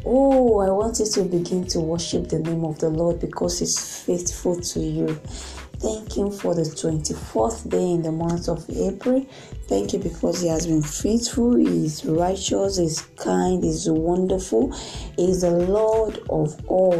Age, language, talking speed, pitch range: 20-39, English, 165 wpm, 165-210 Hz